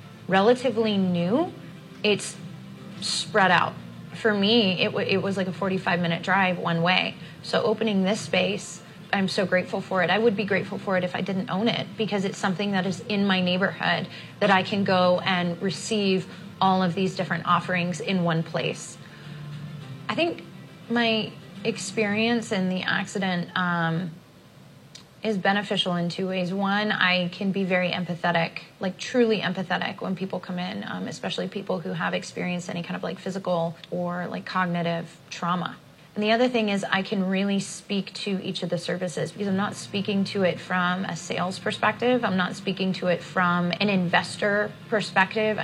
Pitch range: 175-200 Hz